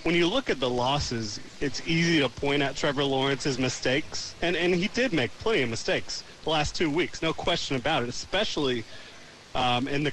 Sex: male